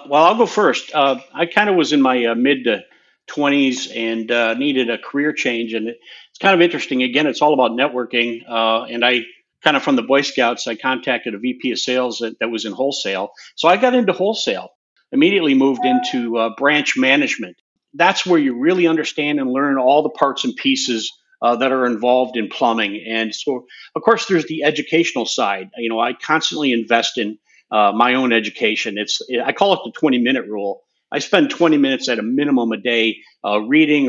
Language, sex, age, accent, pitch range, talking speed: English, male, 50-69, American, 120-170 Hz, 205 wpm